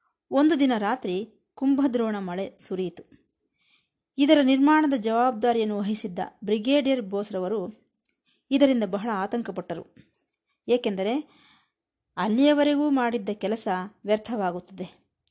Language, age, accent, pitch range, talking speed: Kannada, 20-39, native, 195-255 Hz, 80 wpm